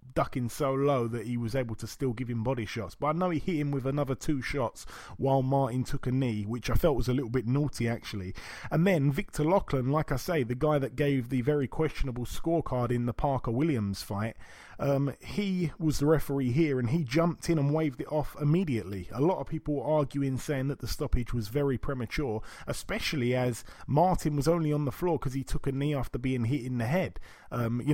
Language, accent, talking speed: English, British, 225 wpm